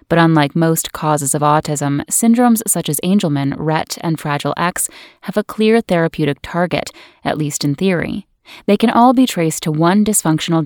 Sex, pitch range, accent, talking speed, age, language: female, 155-200 Hz, American, 175 wpm, 10-29, English